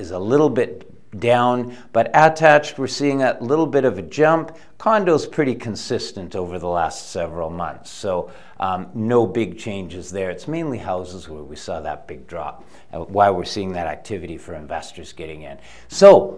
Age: 50-69